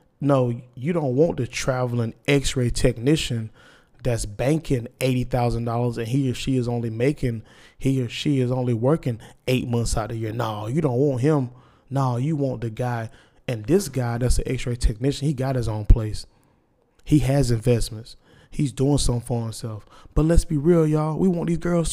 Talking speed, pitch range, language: 190 wpm, 120-155 Hz, English